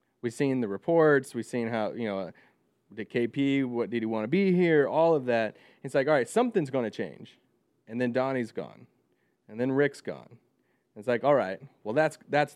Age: 20-39